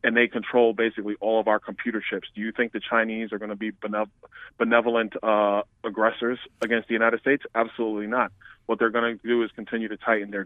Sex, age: male, 30-49